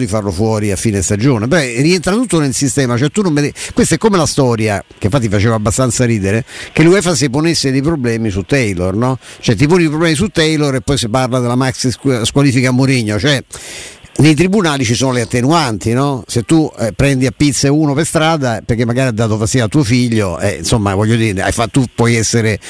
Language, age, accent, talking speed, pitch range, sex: Italian, 50-69, native, 225 wpm, 115-150 Hz, male